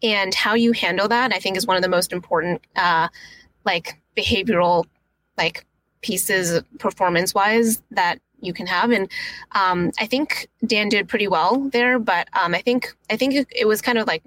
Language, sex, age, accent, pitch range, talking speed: English, female, 20-39, American, 180-235 Hz, 185 wpm